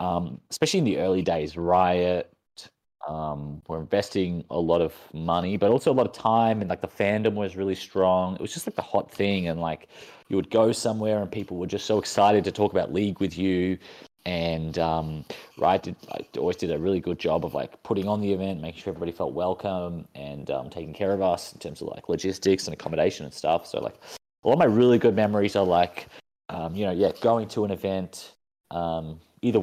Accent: Australian